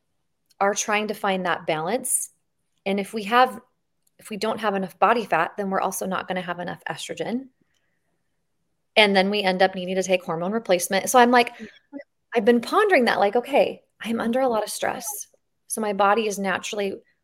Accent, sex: American, female